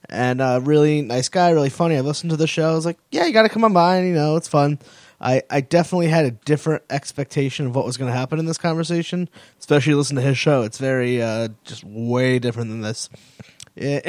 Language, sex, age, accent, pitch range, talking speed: English, male, 20-39, American, 125-160 Hz, 240 wpm